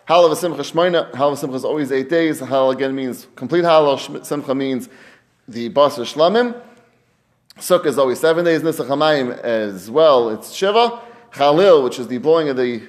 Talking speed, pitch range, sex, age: 170 wpm, 130-170 Hz, male, 30-49